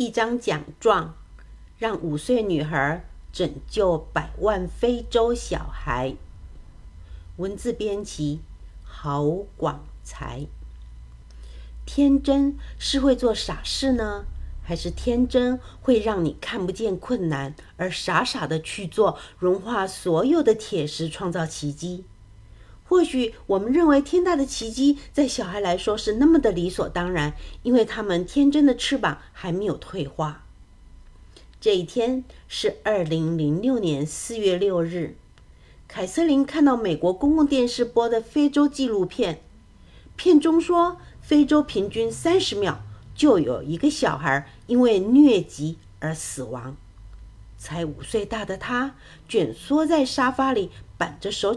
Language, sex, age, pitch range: Chinese, female, 50-69, 150-250 Hz